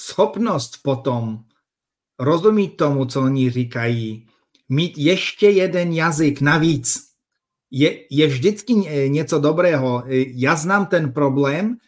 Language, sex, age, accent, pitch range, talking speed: Czech, male, 50-69, native, 135-180 Hz, 105 wpm